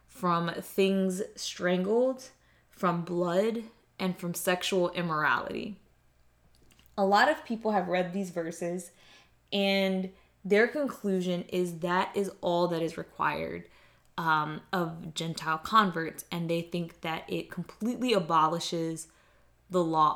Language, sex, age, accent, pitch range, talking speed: English, female, 20-39, American, 170-215 Hz, 120 wpm